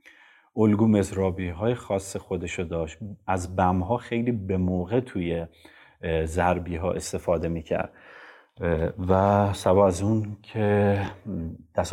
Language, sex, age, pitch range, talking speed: Persian, male, 30-49, 90-110 Hz, 120 wpm